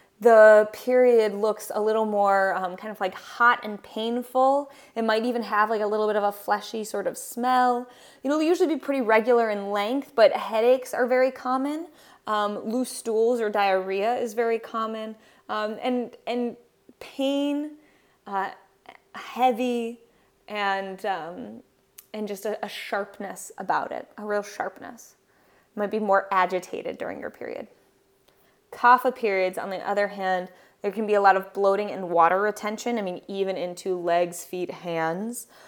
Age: 20-39